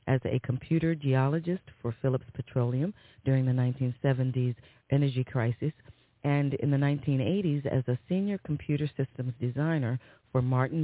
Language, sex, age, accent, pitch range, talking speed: English, female, 40-59, American, 125-155 Hz, 135 wpm